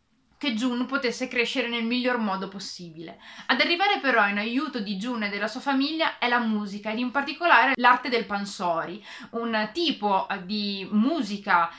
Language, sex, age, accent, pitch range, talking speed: Italian, female, 30-49, native, 215-280 Hz, 165 wpm